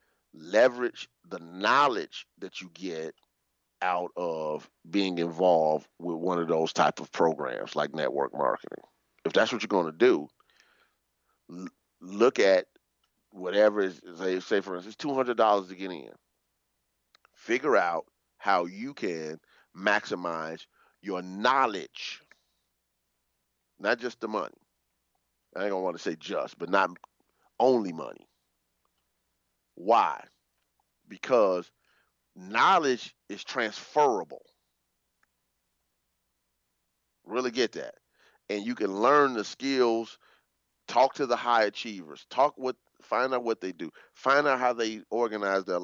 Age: 30-49